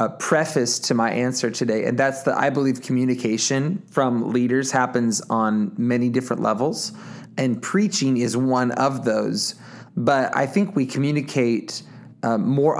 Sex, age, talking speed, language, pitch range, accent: male, 30-49, 150 wpm, English, 120-140 Hz, American